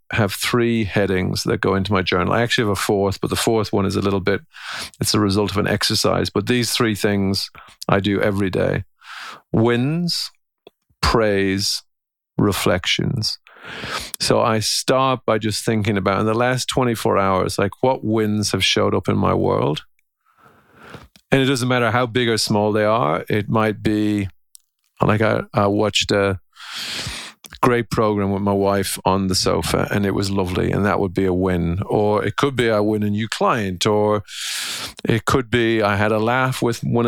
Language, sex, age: English, male, 40-59